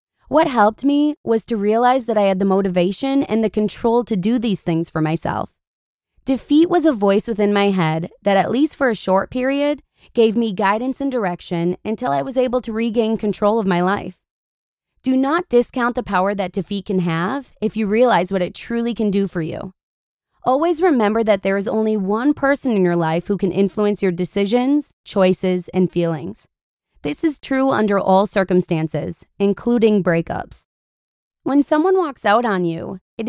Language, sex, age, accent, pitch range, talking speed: English, female, 20-39, American, 185-245 Hz, 185 wpm